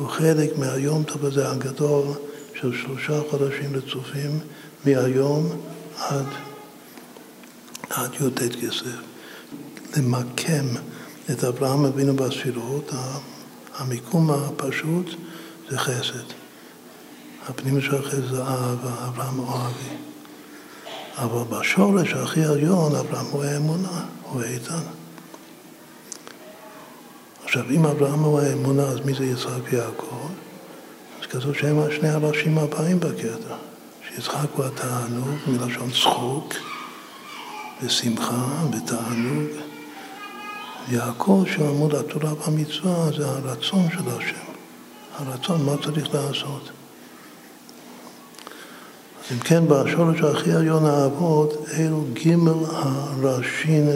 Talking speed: 90 wpm